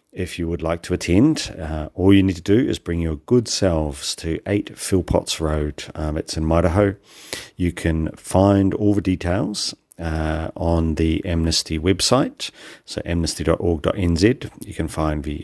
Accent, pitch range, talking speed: British, 80-95 Hz, 165 wpm